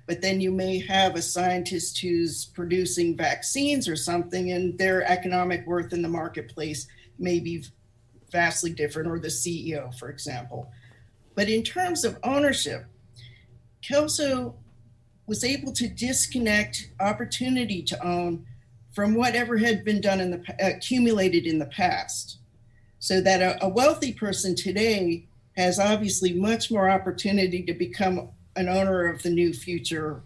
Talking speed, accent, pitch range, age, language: 145 wpm, American, 150-190 Hz, 50-69, English